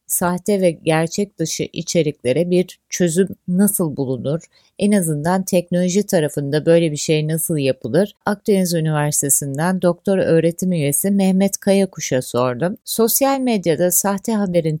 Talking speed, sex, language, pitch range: 120 wpm, female, Turkish, 150-195 Hz